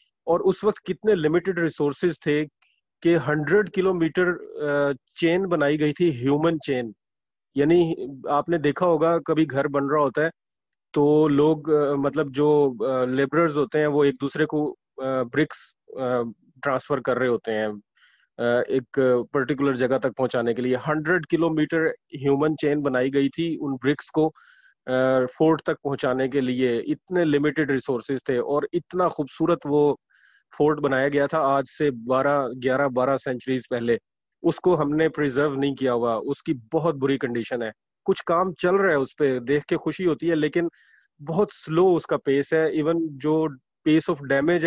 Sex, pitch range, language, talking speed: male, 135-160 Hz, English, 155 wpm